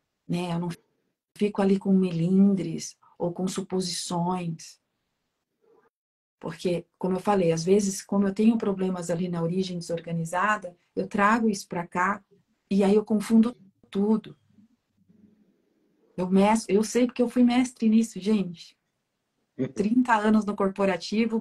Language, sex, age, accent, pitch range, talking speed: Portuguese, female, 40-59, Brazilian, 170-210 Hz, 135 wpm